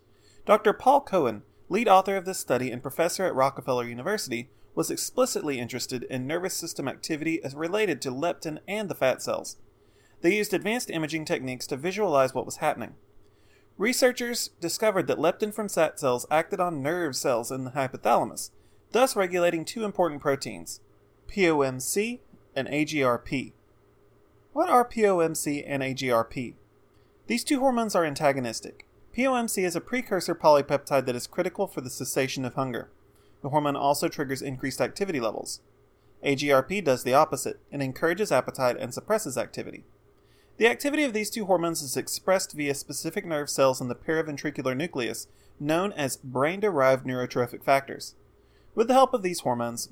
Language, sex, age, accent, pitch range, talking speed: English, male, 30-49, American, 125-185 Hz, 155 wpm